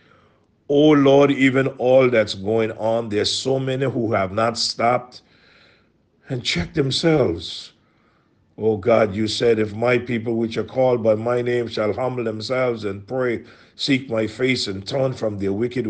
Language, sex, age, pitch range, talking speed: English, male, 50-69, 95-125 Hz, 160 wpm